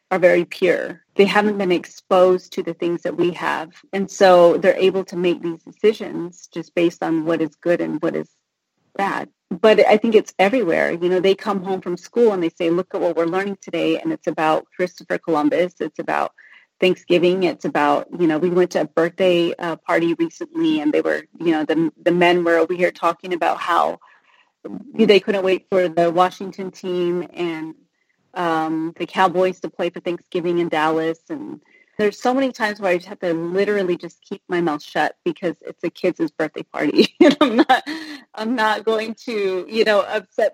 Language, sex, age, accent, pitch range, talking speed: English, female, 30-49, American, 170-220 Hz, 200 wpm